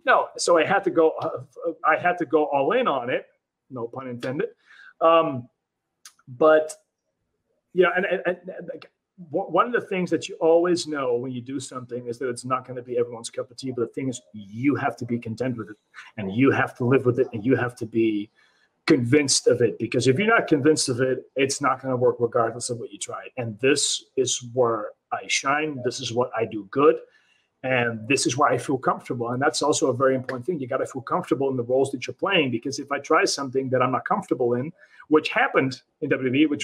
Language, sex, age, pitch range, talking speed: English, male, 30-49, 125-155 Hz, 230 wpm